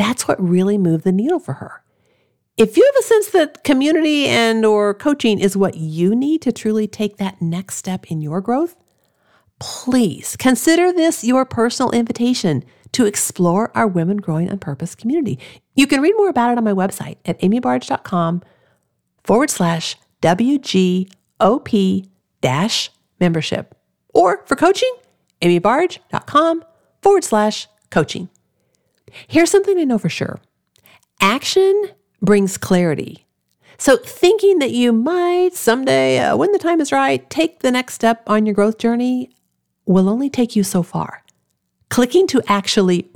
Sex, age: female, 50-69